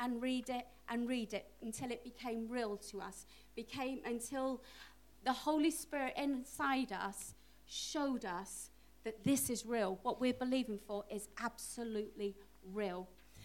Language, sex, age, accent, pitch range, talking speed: English, female, 40-59, British, 225-300 Hz, 145 wpm